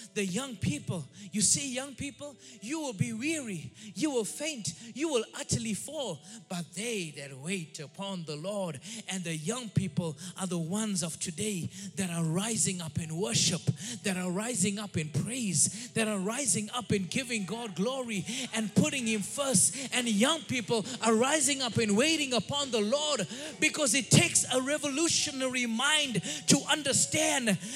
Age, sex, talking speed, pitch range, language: 30-49, male, 165 wpm, 200-285 Hz, English